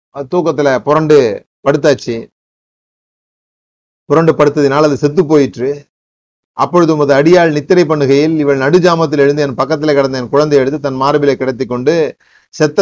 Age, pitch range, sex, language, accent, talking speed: 30-49, 130-160 Hz, male, Tamil, native, 120 wpm